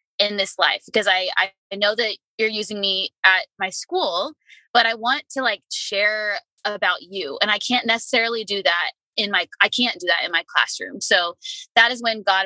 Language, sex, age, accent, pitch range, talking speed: English, female, 20-39, American, 185-245 Hz, 200 wpm